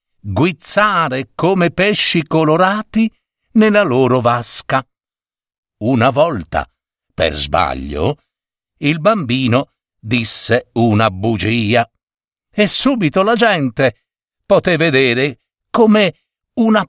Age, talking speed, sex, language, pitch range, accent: 50-69, 85 wpm, male, Italian, 105-170 Hz, native